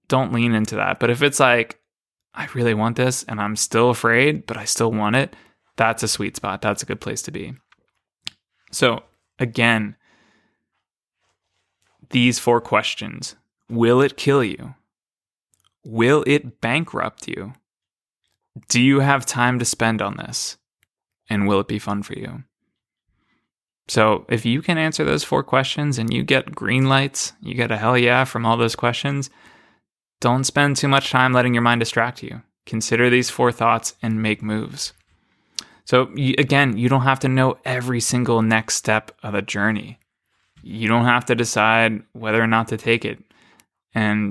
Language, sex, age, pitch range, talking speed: English, male, 20-39, 110-125 Hz, 170 wpm